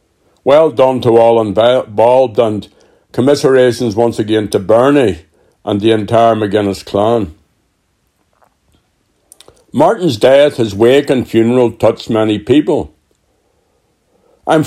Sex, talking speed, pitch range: male, 105 wpm, 110-130 Hz